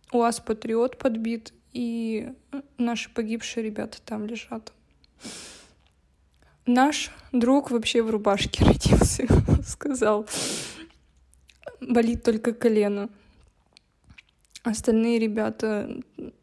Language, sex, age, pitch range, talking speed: Russian, female, 20-39, 220-240 Hz, 80 wpm